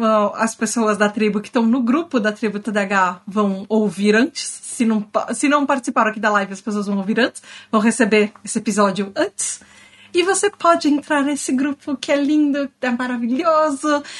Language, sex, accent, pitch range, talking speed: Portuguese, female, Brazilian, 230-285 Hz, 185 wpm